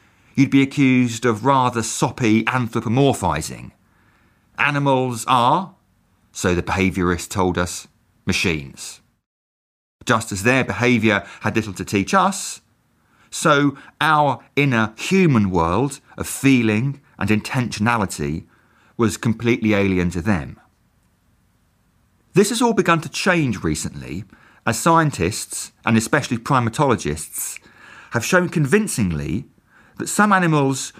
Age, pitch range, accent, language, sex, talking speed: 40-59, 105-145 Hz, British, English, male, 105 wpm